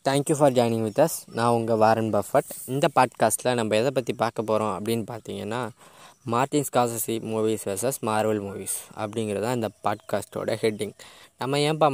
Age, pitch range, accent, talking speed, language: 20-39, 110-125 Hz, native, 150 wpm, Tamil